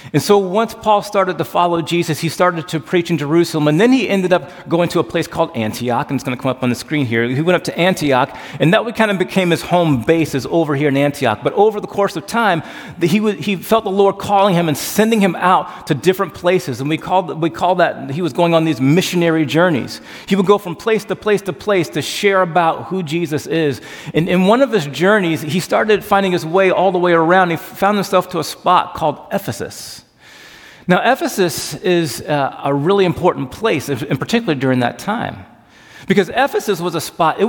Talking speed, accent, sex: 225 wpm, American, male